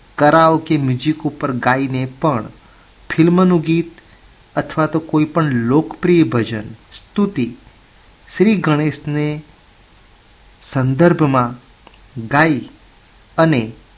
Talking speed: 95 wpm